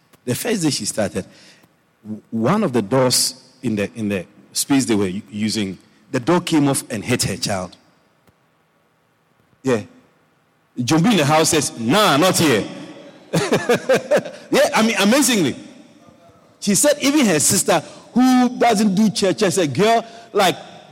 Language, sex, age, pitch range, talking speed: English, male, 50-69, 130-210 Hz, 145 wpm